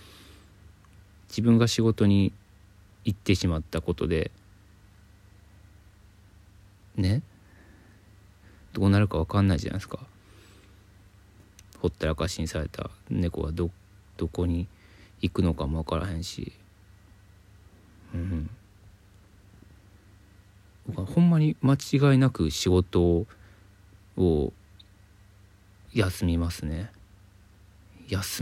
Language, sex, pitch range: Japanese, male, 90-100 Hz